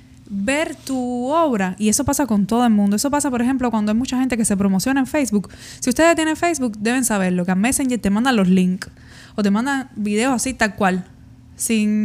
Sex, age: female, 20-39